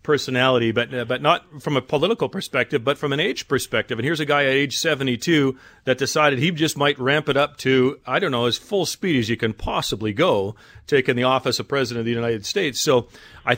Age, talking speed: 40-59, 230 wpm